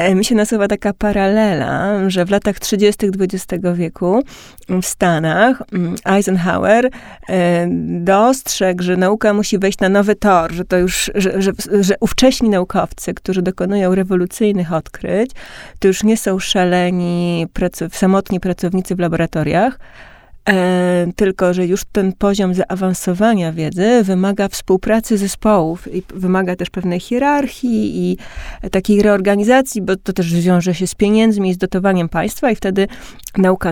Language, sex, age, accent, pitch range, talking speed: Polish, female, 30-49, native, 175-205 Hz, 135 wpm